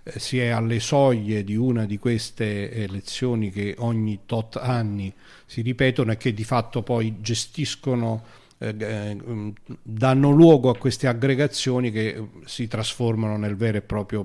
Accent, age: native, 50-69